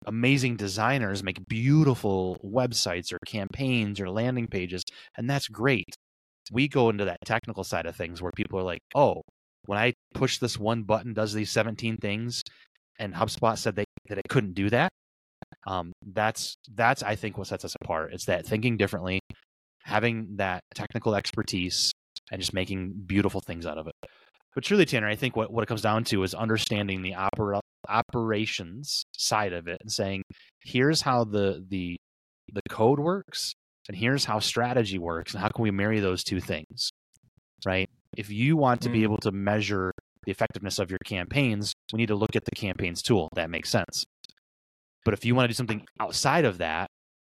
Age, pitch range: 20-39, 95-115 Hz